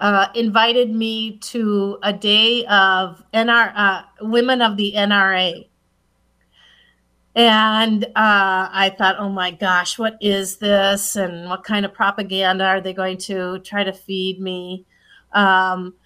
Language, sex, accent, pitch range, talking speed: English, female, American, 195-235 Hz, 140 wpm